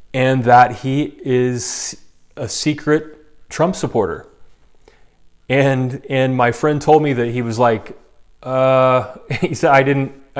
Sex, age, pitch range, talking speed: male, 30-49, 120-140 Hz, 135 wpm